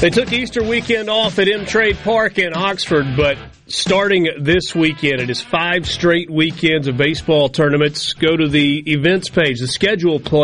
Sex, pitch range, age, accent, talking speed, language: male, 135-175 Hz, 40-59, American, 170 wpm, English